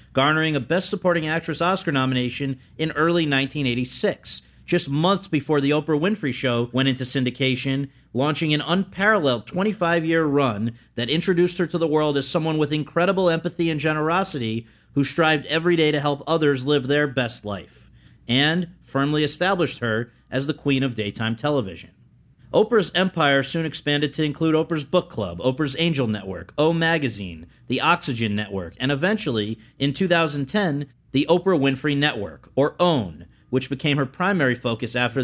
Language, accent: English, American